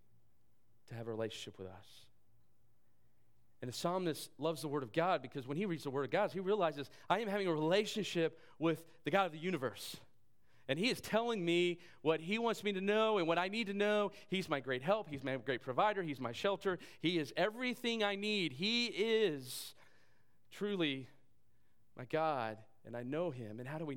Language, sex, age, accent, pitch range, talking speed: English, male, 40-59, American, 125-165 Hz, 205 wpm